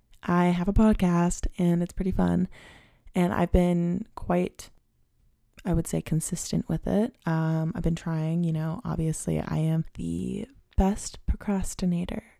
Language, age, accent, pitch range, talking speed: English, 20-39, American, 165-200 Hz, 145 wpm